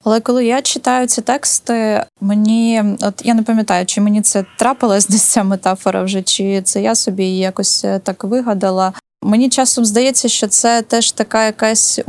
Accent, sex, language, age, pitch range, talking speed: native, female, Ukrainian, 20-39, 205-240 Hz, 175 wpm